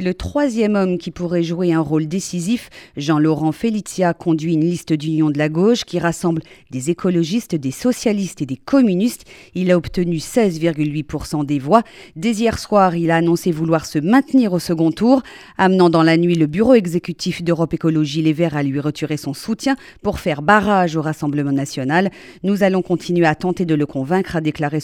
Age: 40-59